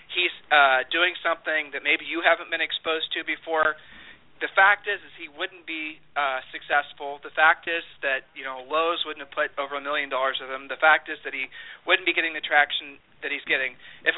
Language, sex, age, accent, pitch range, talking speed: English, male, 40-59, American, 145-185 Hz, 215 wpm